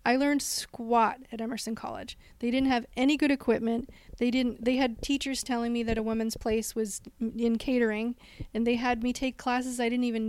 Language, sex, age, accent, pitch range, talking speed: English, female, 30-49, American, 225-255 Hz, 205 wpm